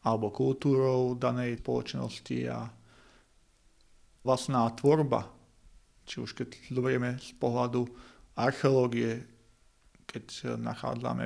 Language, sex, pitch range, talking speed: Slovak, male, 110-135 Hz, 85 wpm